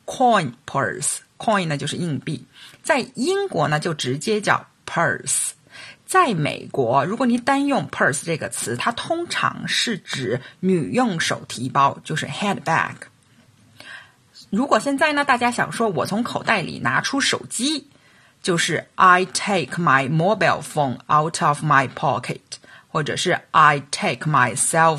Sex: female